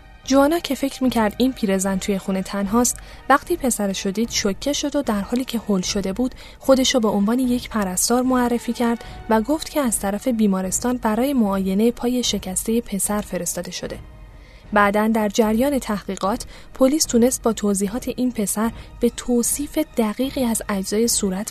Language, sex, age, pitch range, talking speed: Persian, female, 10-29, 205-250 Hz, 160 wpm